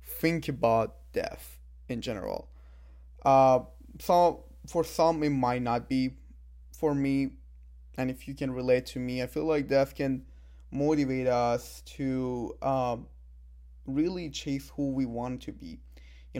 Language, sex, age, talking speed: English, male, 20-39, 145 wpm